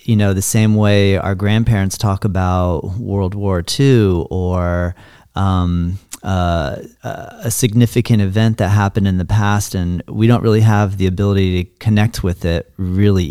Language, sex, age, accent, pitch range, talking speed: English, male, 40-59, American, 90-105 Hz, 160 wpm